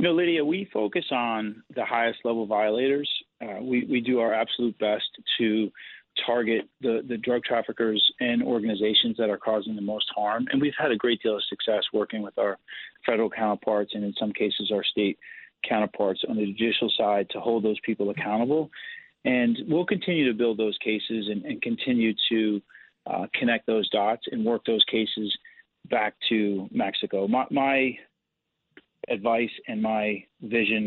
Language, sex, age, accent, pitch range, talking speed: English, male, 40-59, American, 105-125 Hz, 170 wpm